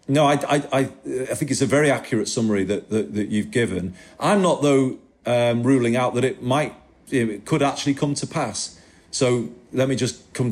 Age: 40-59